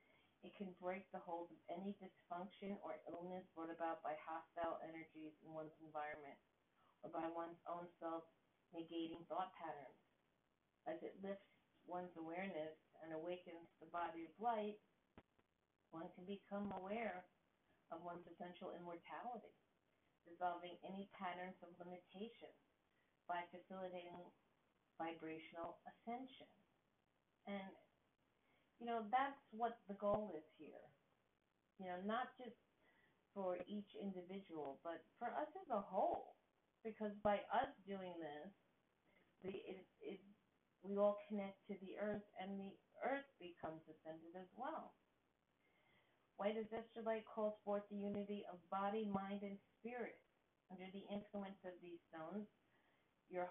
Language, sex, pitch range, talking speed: English, female, 170-205 Hz, 130 wpm